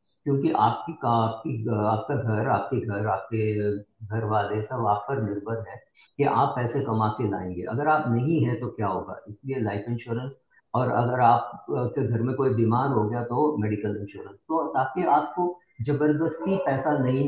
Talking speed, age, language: 175 wpm, 50-69, Hindi